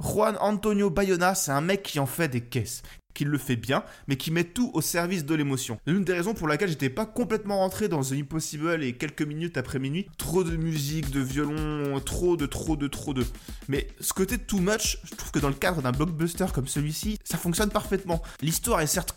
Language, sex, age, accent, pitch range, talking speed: French, male, 20-39, French, 140-185 Hz, 225 wpm